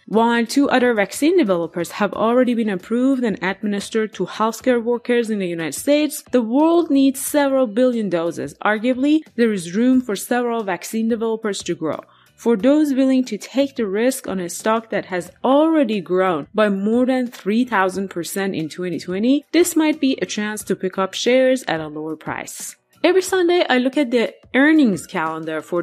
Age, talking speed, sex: 20-39, 175 wpm, female